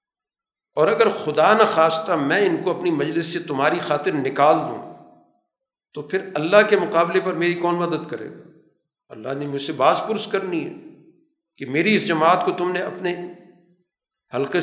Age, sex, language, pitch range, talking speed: 50-69, male, Urdu, 155-200 Hz, 170 wpm